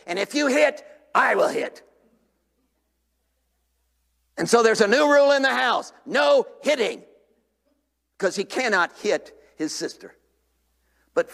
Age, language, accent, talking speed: 50-69, English, American, 130 wpm